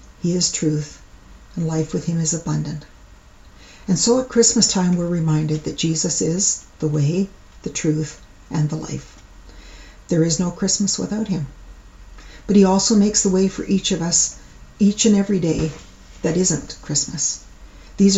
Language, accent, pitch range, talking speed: English, American, 155-190 Hz, 165 wpm